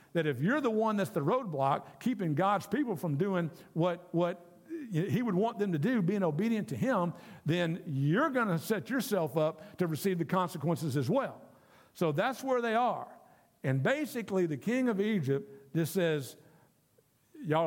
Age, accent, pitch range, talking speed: 50-69, American, 145-185 Hz, 175 wpm